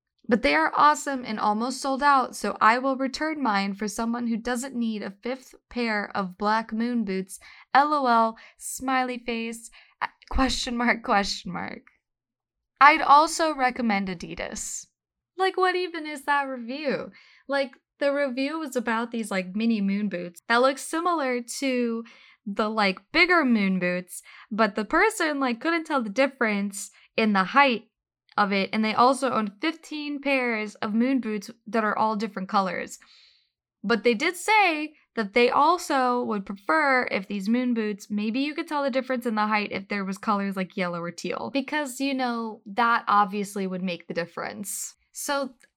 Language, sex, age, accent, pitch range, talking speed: English, female, 10-29, American, 200-270 Hz, 170 wpm